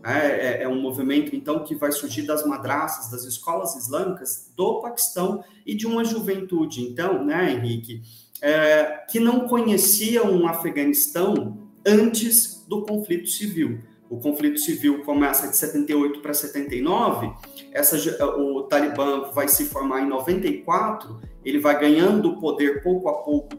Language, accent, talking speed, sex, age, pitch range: Portuguese, Brazilian, 140 wpm, male, 30-49, 140-195 Hz